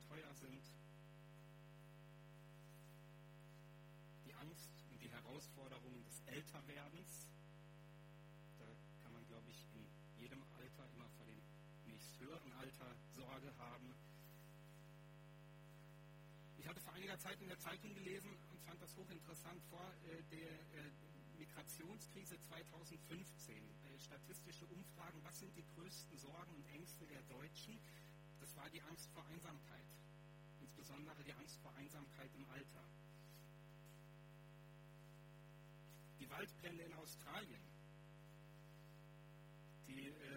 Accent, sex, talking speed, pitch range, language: German, male, 105 wpm, 145-150 Hz, German